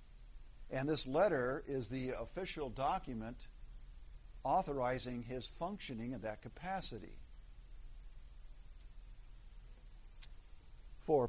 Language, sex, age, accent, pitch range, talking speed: English, male, 50-69, American, 120-150 Hz, 75 wpm